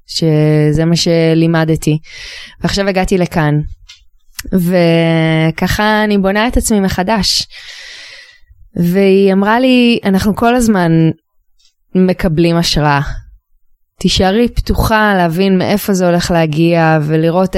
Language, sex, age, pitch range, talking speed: Hebrew, female, 20-39, 160-215 Hz, 95 wpm